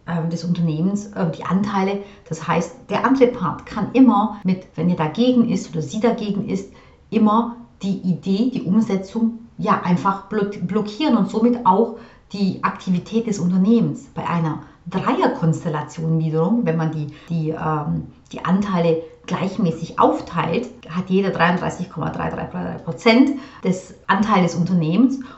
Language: German